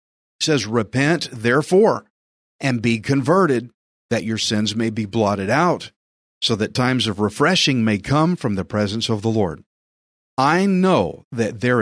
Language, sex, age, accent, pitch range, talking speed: English, male, 40-59, American, 110-145 Hz, 150 wpm